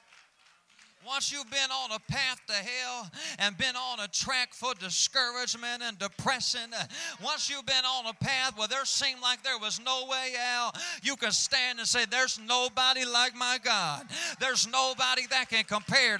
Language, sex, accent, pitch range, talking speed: English, male, American, 195-250 Hz, 175 wpm